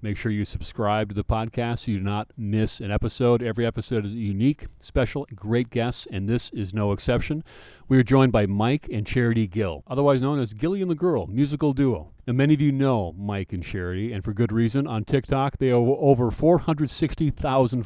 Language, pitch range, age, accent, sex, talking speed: English, 105-130 Hz, 40-59, American, male, 200 wpm